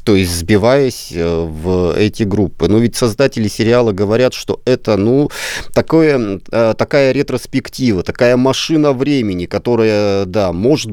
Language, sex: Russian, male